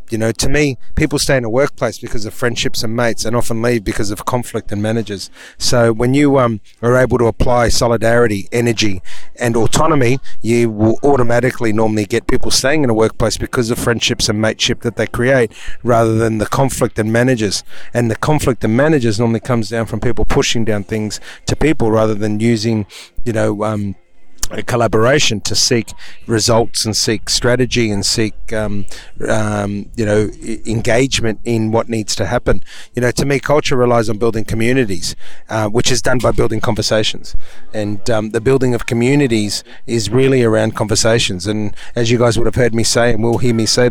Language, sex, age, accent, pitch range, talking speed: English, male, 30-49, Australian, 110-125 Hz, 190 wpm